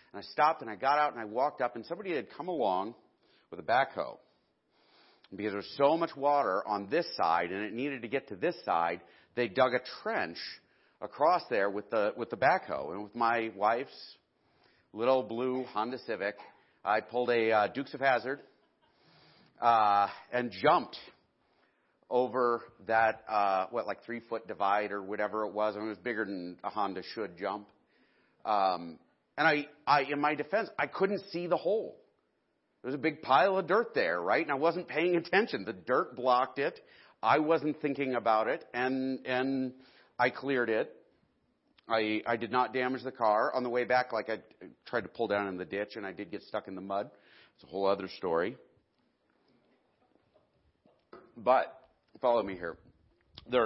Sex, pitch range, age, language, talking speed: male, 105-140 Hz, 40-59, English, 185 wpm